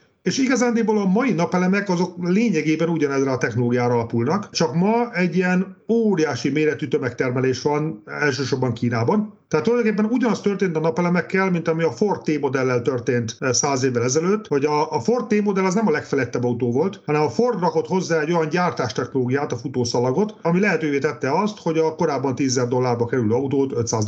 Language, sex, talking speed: Hungarian, male, 170 wpm